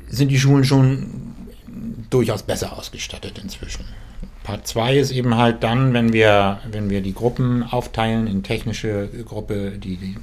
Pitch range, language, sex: 100-120 Hz, German, male